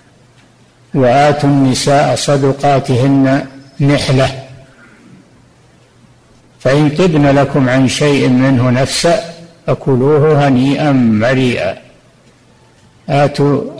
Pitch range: 130-150 Hz